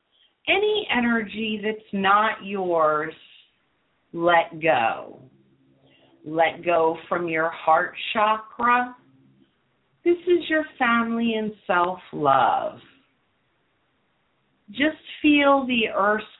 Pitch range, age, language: 175-240 Hz, 40-59, English